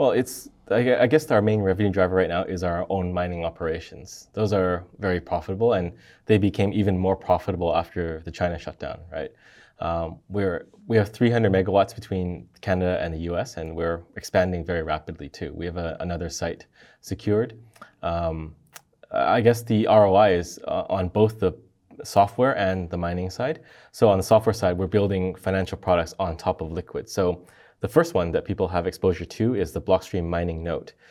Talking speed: 180 wpm